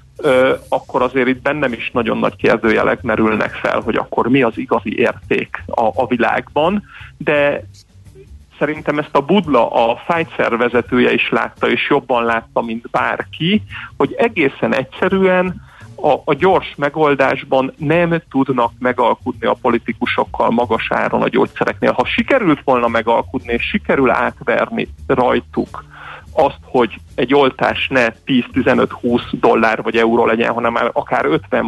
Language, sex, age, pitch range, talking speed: Hungarian, male, 40-59, 120-160 Hz, 135 wpm